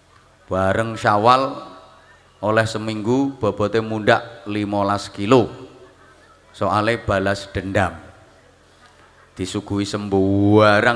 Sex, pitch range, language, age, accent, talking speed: male, 100-125 Hz, Indonesian, 30-49, native, 70 wpm